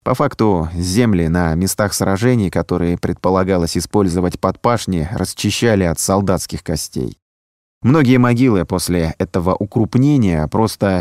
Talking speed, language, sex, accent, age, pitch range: 115 wpm, Russian, male, native, 20-39, 85-105 Hz